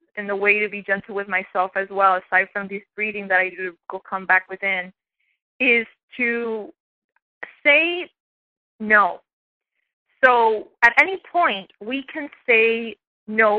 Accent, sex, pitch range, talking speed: American, female, 200-240 Hz, 140 wpm